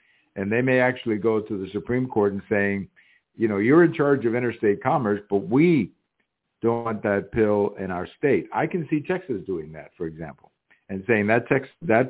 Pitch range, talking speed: 100-120 Hz, 200 wpm